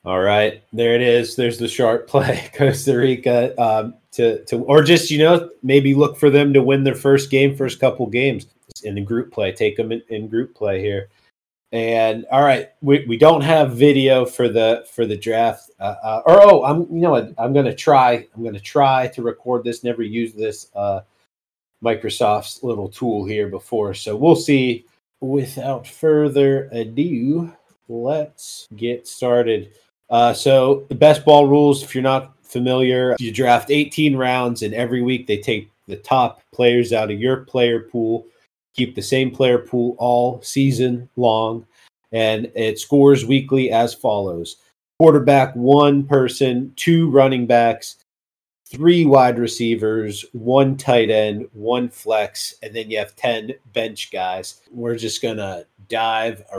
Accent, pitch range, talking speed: American, 115-135 Hz, 165 wpm